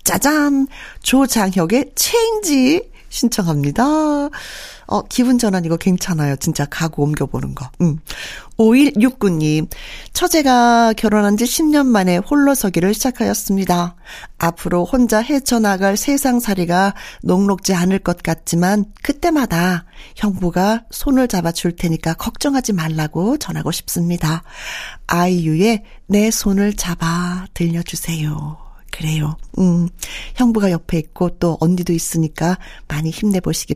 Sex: female